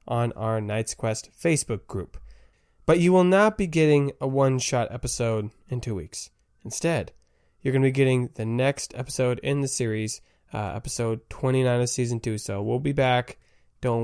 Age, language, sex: 20-39, English, male